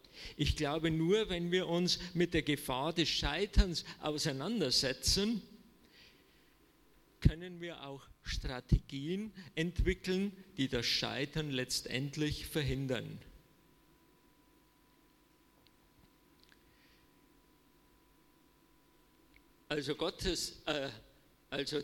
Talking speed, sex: 65 wpm, male